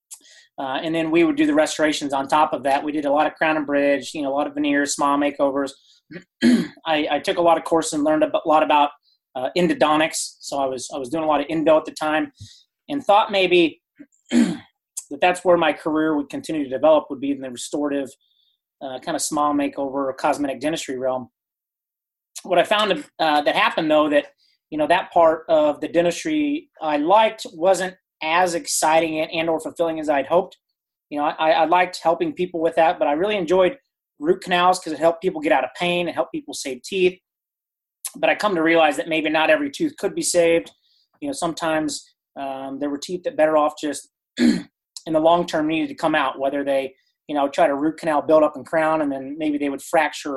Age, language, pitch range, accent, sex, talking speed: 30-49, English, 145-180 Hz, American, male, 220 wpm